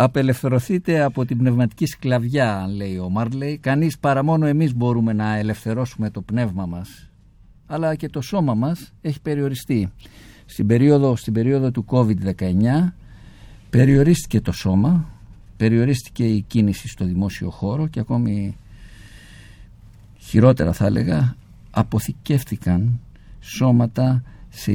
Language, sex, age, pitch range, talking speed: Greek, male, 50-69, 95-130 Hz, 115 wpm